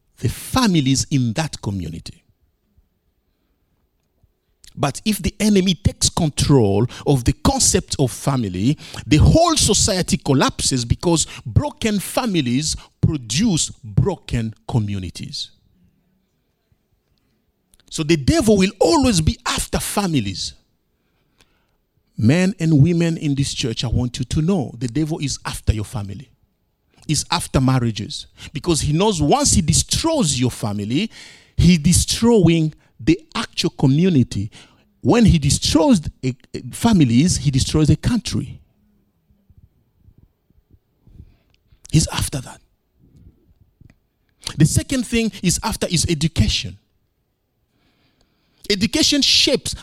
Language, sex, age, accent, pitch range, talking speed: English, male, 50-69, Nigerian, 110-175 Hz, 105 wpm